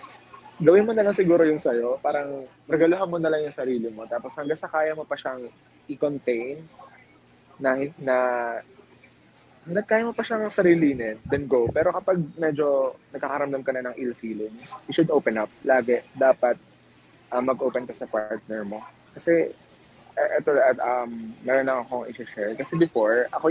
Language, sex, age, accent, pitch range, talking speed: Filipino, male, 20-39, native, 115-150 Hz, 165 wpm